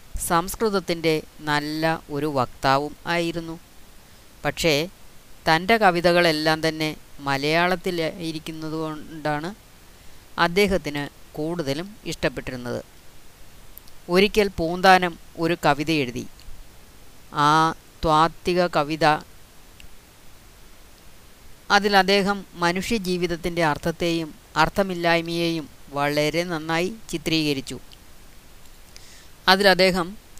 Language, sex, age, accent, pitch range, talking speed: Malayalam, female, 30-49, native, 145-175 Hz, 60 wpm